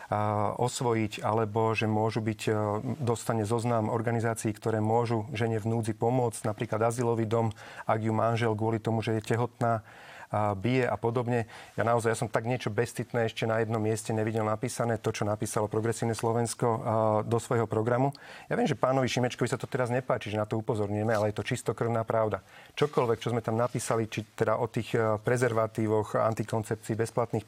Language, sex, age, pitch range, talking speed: Slovak, male, 40-59, 110-120 Hz, 175 wpm